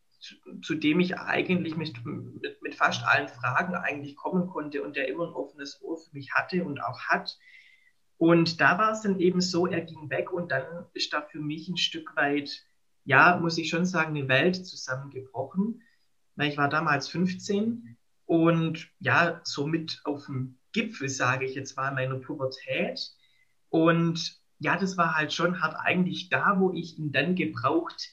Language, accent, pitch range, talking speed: German, German, 140-180 Hz, 180 wpm